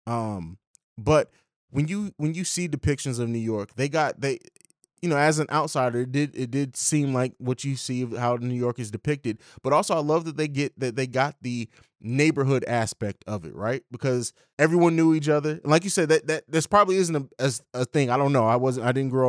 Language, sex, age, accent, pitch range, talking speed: English, male, 20-39, American, 120-155 Hz, 235 wpm